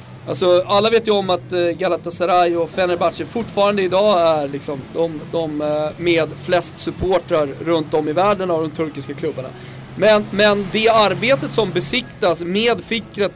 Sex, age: male, 30-49